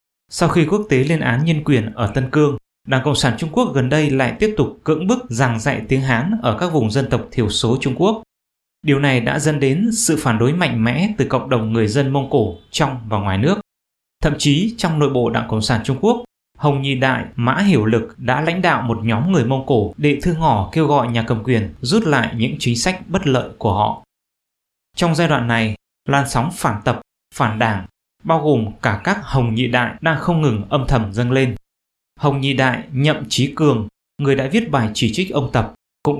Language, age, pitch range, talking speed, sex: English, 20-39, 120-155 Hz, 225 wpm, male